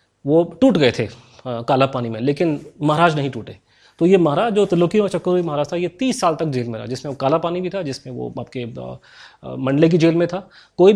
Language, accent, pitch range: English, Indian, 135-180 Hz